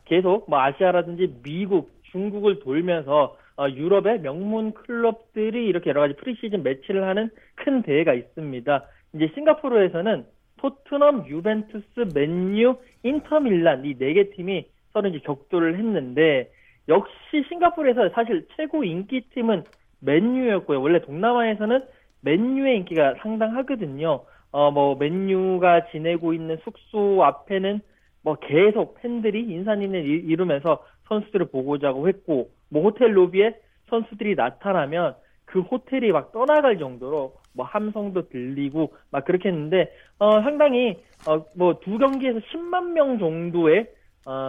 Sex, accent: male, native